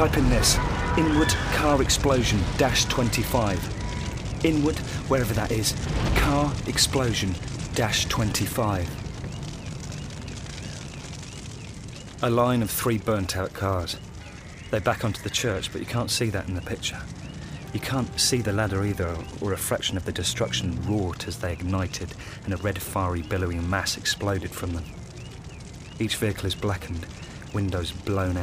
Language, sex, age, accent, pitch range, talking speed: English, male, 30-49, British, 95-120 Hz, 140 wpm